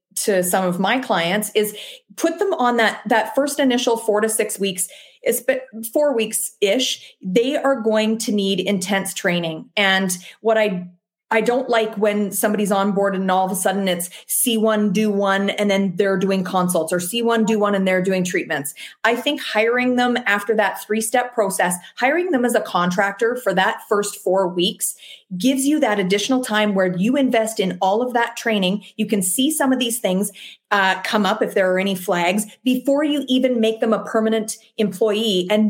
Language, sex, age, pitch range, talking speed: English, female, 30-49, 195-235 Hz, 195 wpm